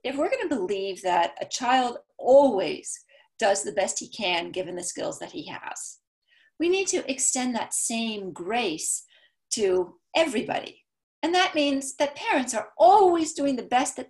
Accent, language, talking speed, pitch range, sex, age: American, English, 170 wpm, 205-300 Hz, female, 40-59